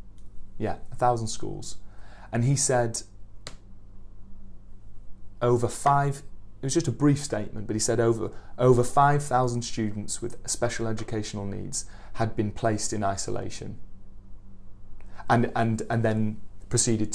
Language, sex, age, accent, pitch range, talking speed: English, male, 30-49, British, 100-125 Hz, 130 wpm